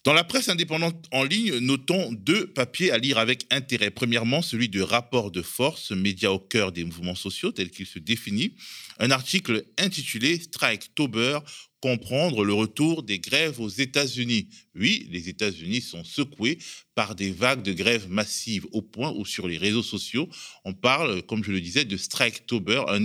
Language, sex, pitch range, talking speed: French, male, 100-140 Hz, 175 wpm